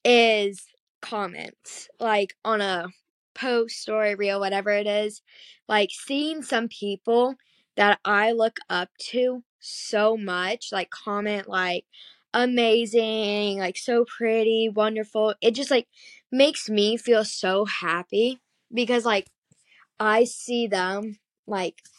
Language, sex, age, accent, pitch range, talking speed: English, female, 10-29, American, 200-230 Hz, 120 wpm